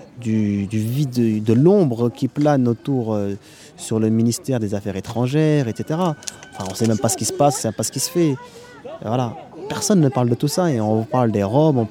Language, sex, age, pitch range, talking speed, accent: French, male, 30-49, 105-140 Hz, 240 wpm, French